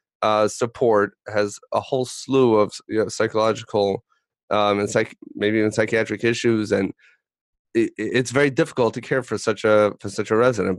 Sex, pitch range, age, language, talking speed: male, 105-120 Hz, 30-49, English, 170 wpm